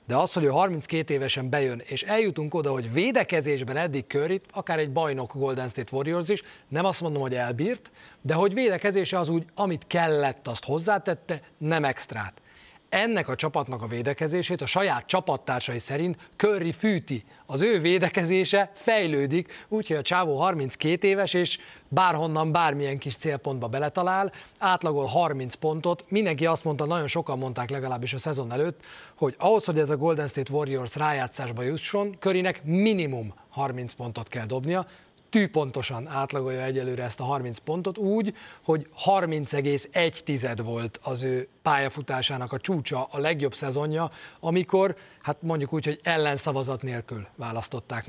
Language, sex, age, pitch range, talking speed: Hungarian, male, 30-49, 135-180 Hz, 150 wpm